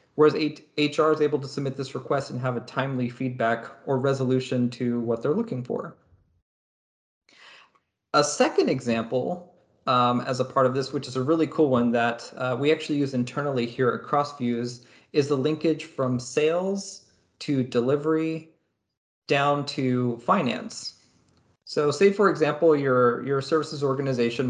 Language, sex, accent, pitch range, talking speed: English, male, American, 125-150 Hz, 150 wpm